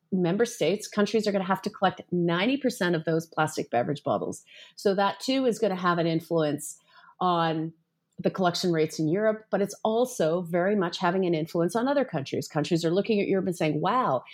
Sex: female